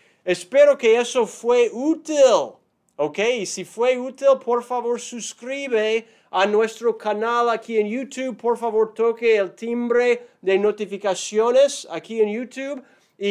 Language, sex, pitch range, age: Spanish, male, 195-245 Hz, 30-49